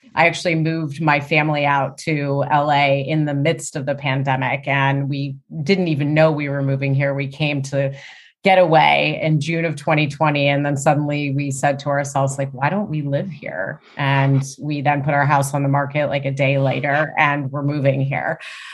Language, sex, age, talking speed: English, female, 30-49, 200 wpm